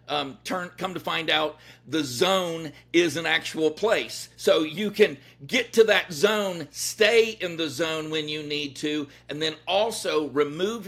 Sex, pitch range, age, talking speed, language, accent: male, 150-200 Hz, 50-69, 170 wpm, English, American